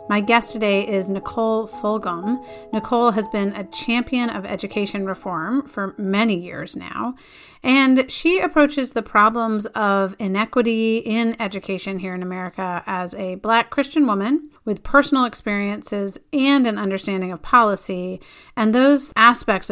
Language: English